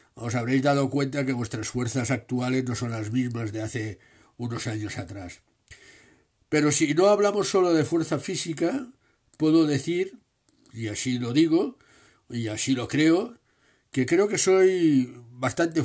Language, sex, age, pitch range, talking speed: Spanish, male, 60-79, 120-160 Hz, 150 wpm